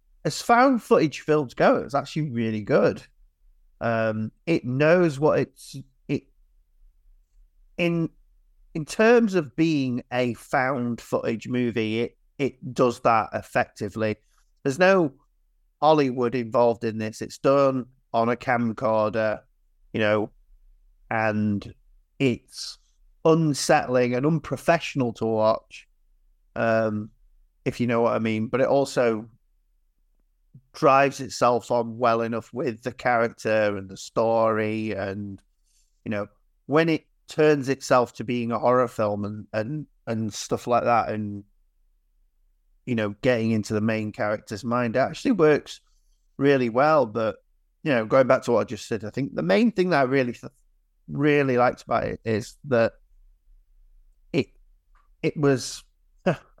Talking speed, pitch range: 135 wpm, 100-135 Hz